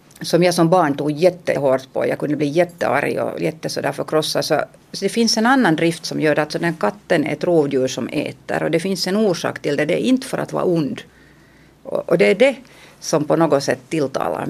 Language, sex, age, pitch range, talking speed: Finnish, female, 50-69, 145-185 Hz, 230 wpm